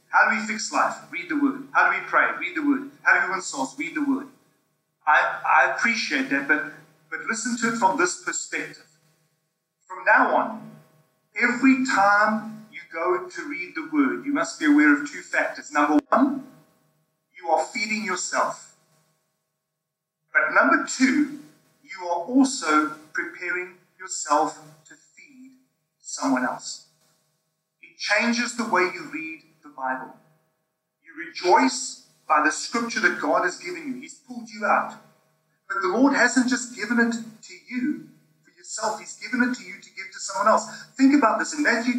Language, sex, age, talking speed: English, male, 40-59, 170 wpm